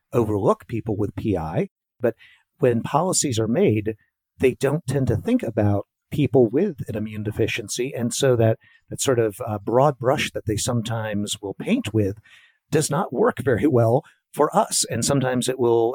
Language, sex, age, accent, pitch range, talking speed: English, male, 50-69, American, 110-135 Hz, 175 wpm